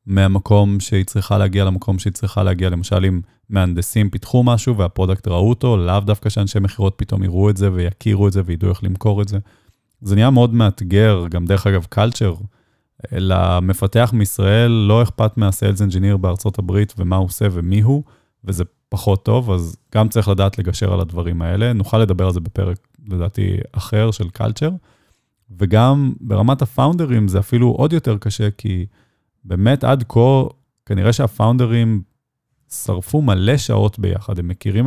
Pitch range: 95-115 Hz